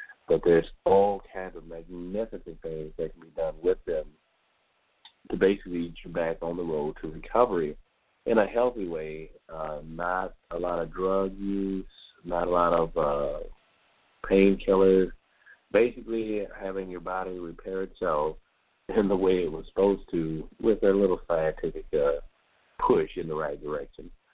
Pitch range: 85-100 Hz